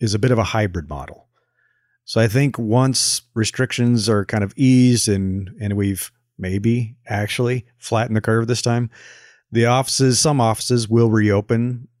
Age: 30-49